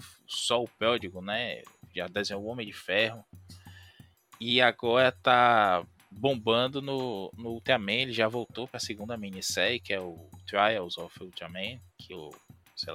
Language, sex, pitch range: Portuguese, male, 95-120 Hz